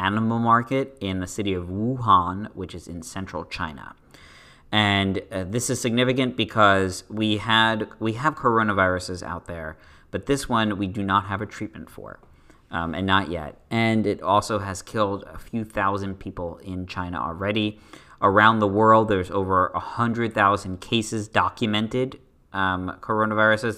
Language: English